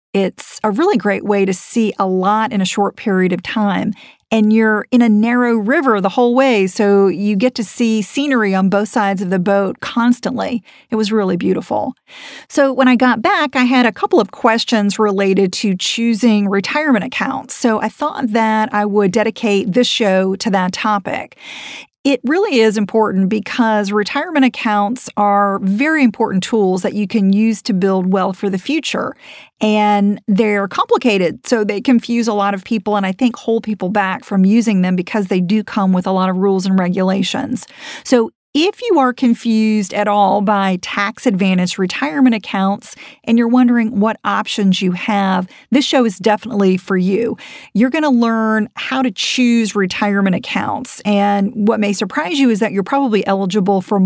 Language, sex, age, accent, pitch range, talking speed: English, female, 40-59, American, 200-240 Hz, 185 wpm